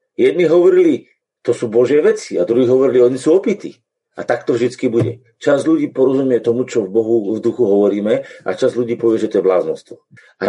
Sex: male